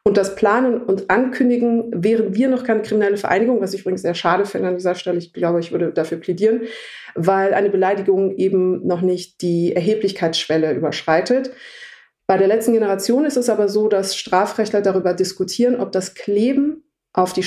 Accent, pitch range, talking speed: German, 180-220 Hz, 180 wpm